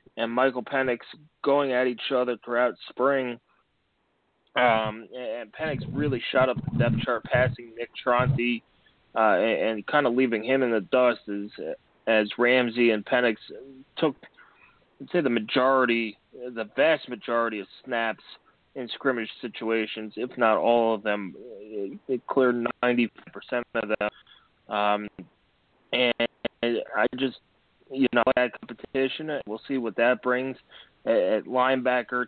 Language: English